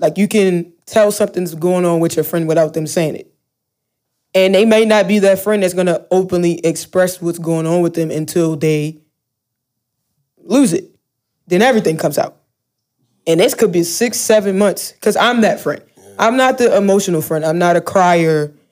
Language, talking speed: English, 190 wpm